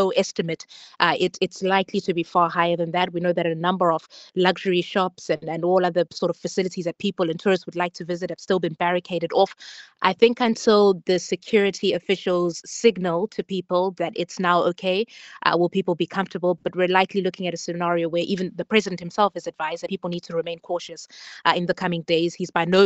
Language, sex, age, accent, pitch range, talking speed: English, female, 20-39, South African, 170-190 Hz, 220 wpm